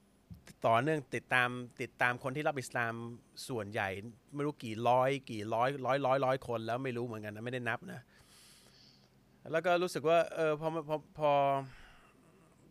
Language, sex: Thai, male